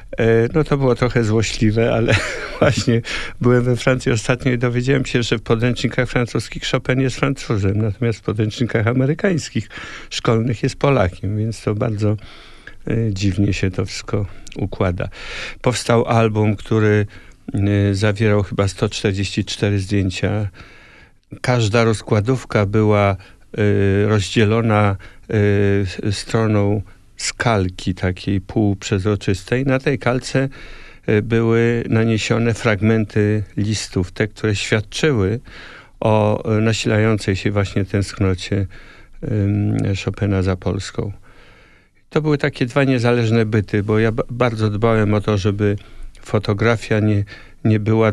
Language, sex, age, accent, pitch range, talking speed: Polish, male, 50-69, native, 100-120 Hz, 110 wpm